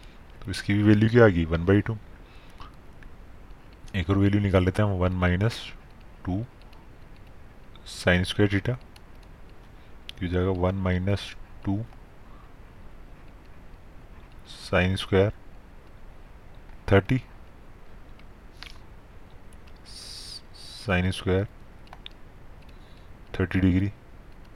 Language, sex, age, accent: Hindi, male, 30-49, native